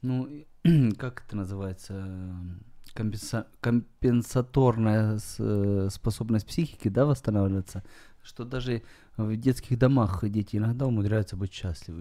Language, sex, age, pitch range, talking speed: Ukrainian, male, 30-49, 105-135 Hz, 100 wpm